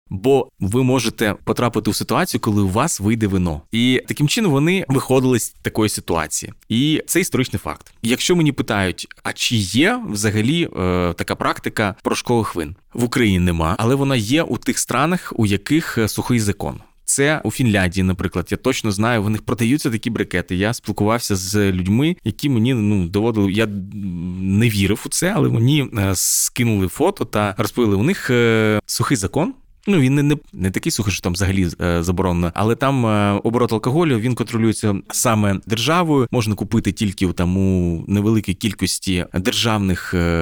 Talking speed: 170 wpm